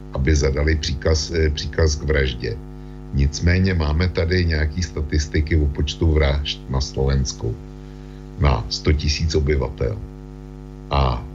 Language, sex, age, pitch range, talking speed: Slovak, male, 60-79, 70-80 Hz, 110 wpm